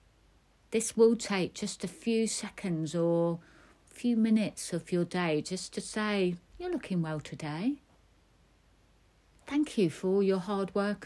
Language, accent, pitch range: English, British, 155-215 Hz